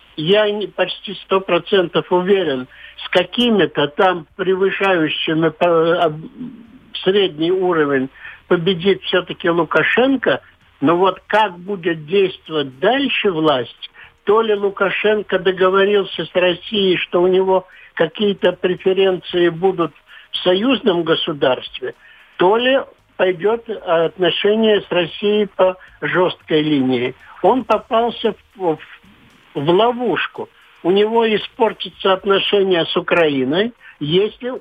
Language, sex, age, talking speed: Russian, male, 60-79, 100 wpm